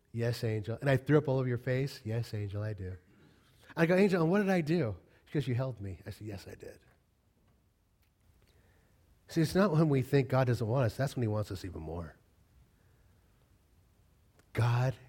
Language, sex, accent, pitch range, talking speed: English, male, American, 95-130 Hz, 195 wpm